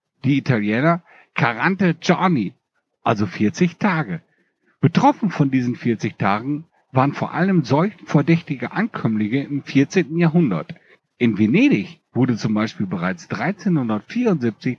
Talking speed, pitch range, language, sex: 115 wpm, 120-180 Hz, German, male